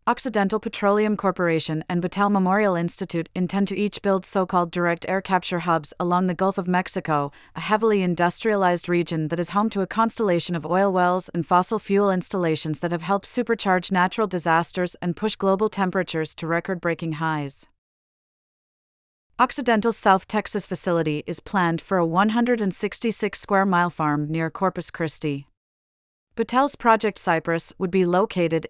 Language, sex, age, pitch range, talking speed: English, female, 30-49, 170-200 Hz, 145 wpm